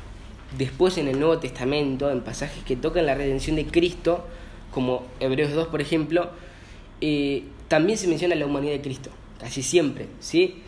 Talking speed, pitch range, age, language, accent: 165 wpm, 130-175 Hz, 10-29, Spanish, Argentinian